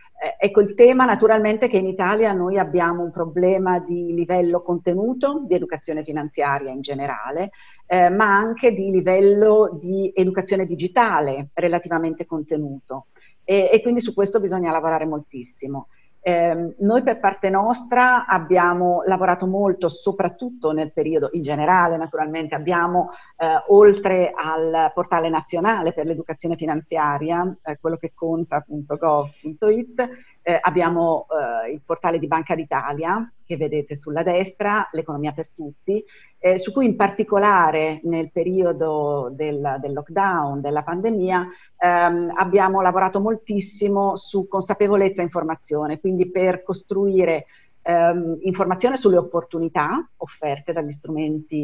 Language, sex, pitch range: Italian, female, 160-195 Hz